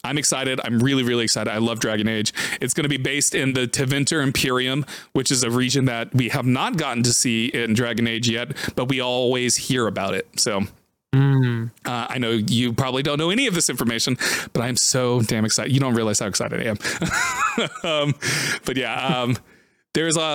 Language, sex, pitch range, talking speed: English, male, 120-155 Hz, 205 wpm